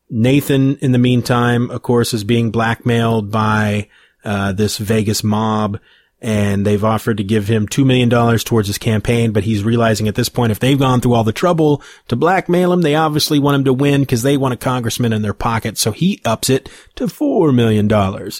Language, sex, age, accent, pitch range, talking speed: English, male, 30-49, American, 105-125 Hz, 200 wpm